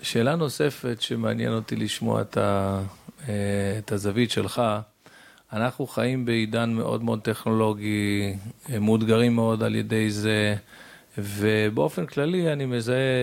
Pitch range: 110-135 Hz